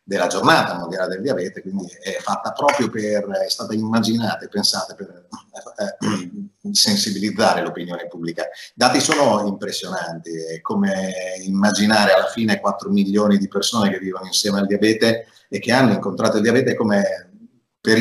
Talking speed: 150 wpm